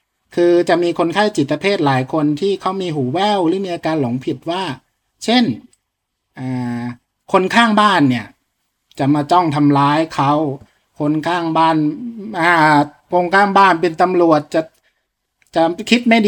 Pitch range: 135-180 Hz